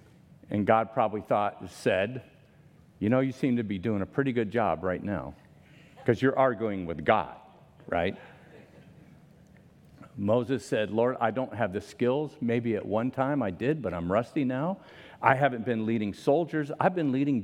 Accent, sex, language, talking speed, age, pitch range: American, male, English, 170 wpm, 50-69, 115-155 Hz